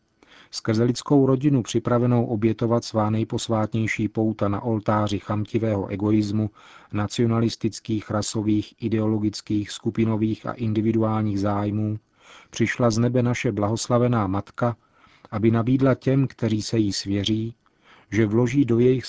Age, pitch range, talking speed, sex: 40-59, 105-120 Hz, 115 wpm, male